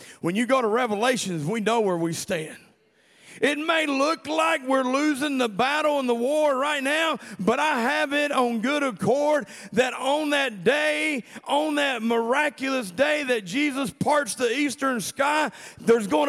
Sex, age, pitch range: male, 50-69, 200-265 Hz